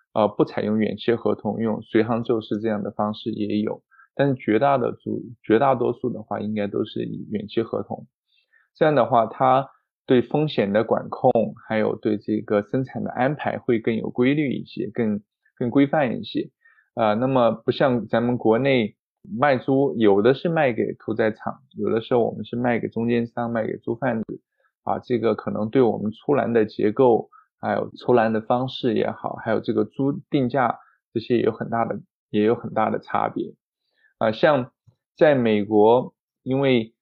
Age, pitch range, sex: 20-39, 105-130 Hz, male